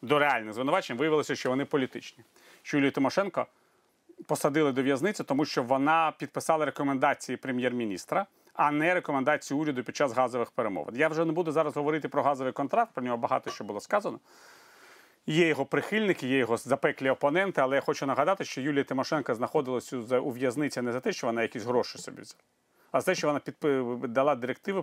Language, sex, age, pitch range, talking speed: Ukrainian, male, 30-49, 135-175 Hz, 180 wpm